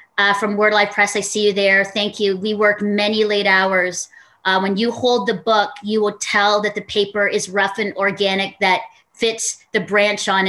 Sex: female